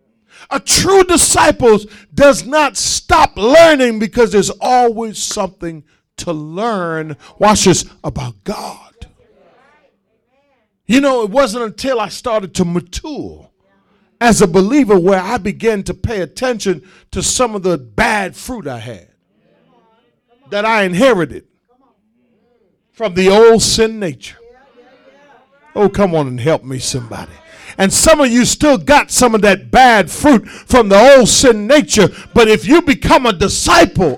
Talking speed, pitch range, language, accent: 140 wpm, 200-275 Hz, English, American